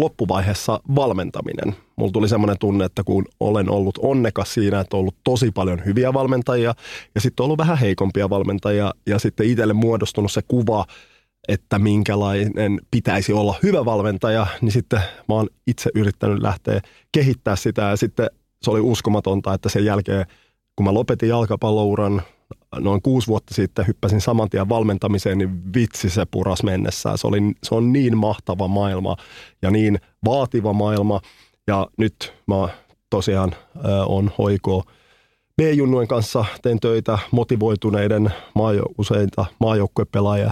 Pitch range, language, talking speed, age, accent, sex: 100-115 Hz, Finnish, 145 wpm, 30-49, native, male